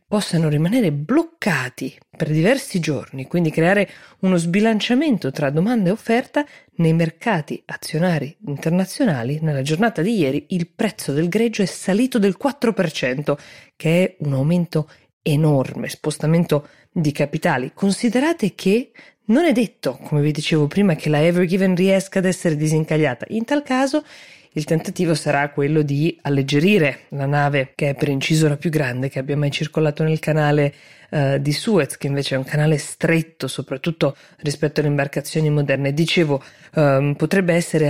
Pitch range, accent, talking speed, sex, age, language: 145-190 Hz, native, 150 wpm, female, 20-39, Italian